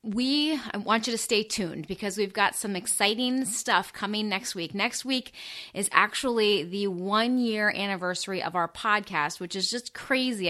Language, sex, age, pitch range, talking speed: English, female, 30-49, 185-230 Hz, 165 wpm